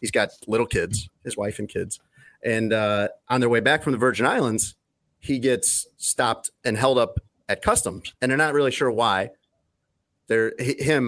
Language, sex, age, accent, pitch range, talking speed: English, male, 30-49, American, 105-135 Hz, 185 wpm